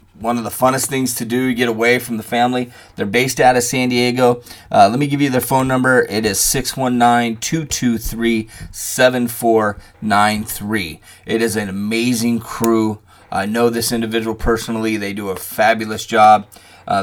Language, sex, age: English, male, 30-49